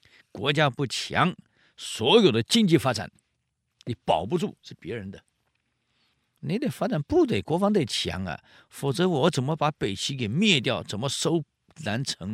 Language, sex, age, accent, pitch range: Chinese, male, 50-69, native, 115-180 Hz